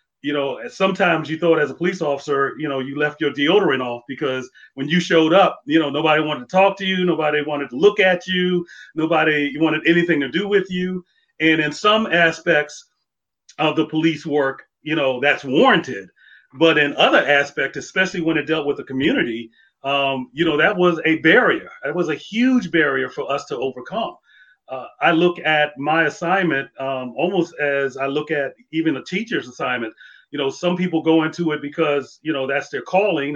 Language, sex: English, male